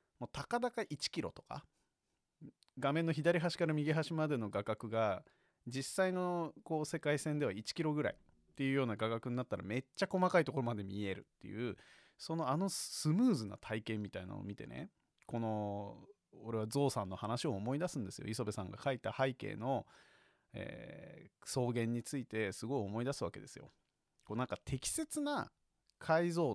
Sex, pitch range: male, 110-165 Hz